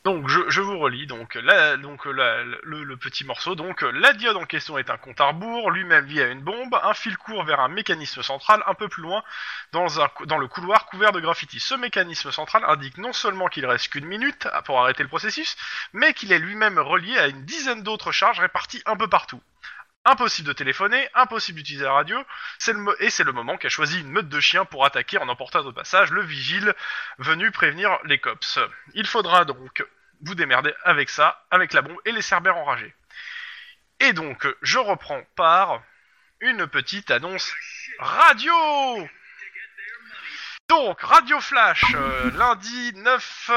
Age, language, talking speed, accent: 20-39, French, 185 wpm, French